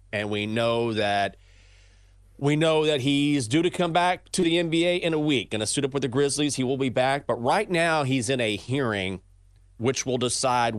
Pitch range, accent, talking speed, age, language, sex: 95-135 Hz, American, 215 wpm, 30-49, English, male